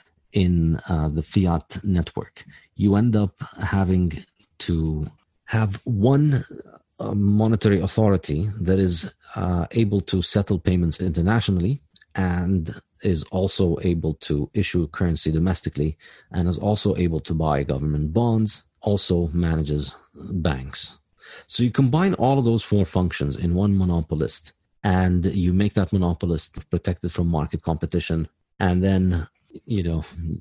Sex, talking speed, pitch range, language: male, 130 wpm, 80-105 Hz, English